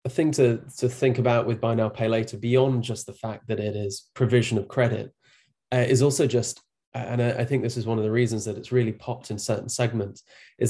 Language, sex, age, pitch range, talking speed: English, male, 20-39, 105-120 Hz, 240 wpm